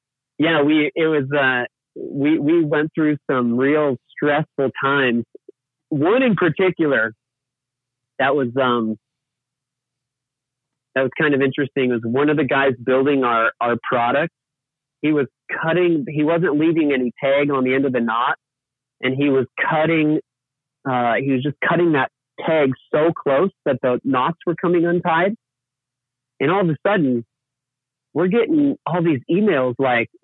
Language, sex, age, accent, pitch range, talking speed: English, male, 40-59, American, 130-160 Hz, 155 wpm